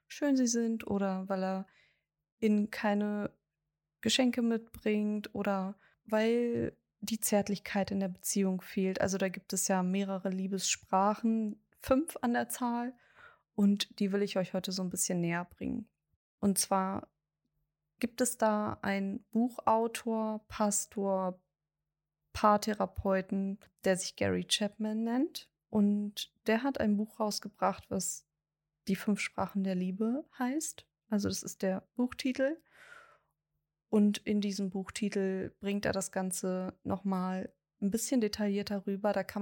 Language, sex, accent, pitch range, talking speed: German, female, German, 190-220 Hz, 130 wpm